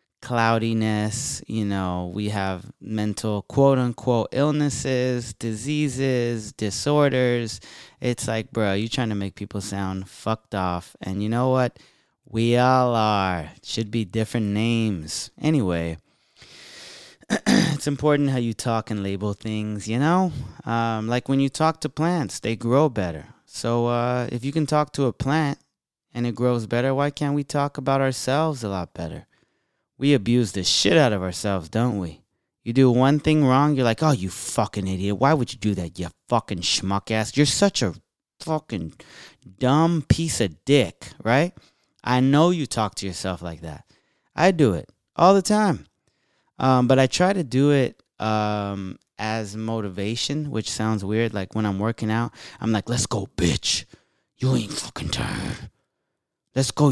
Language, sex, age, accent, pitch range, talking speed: English, male, 30-49, American, 105-135 Hz, 165 wpm